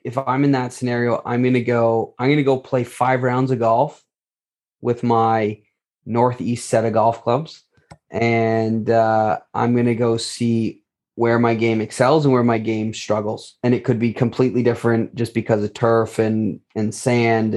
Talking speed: 185 wpm